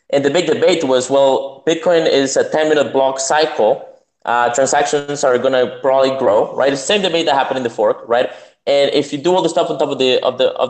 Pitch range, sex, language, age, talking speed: 130-155 Hz, male, English, 20-39, 245 wpm